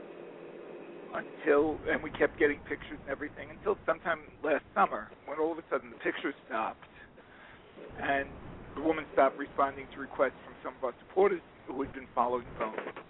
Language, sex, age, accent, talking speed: English, male, 50-69, American, 170 wpm